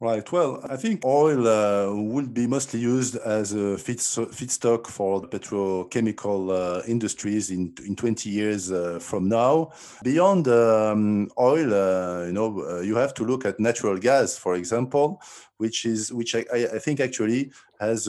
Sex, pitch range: male, 100-120 Hz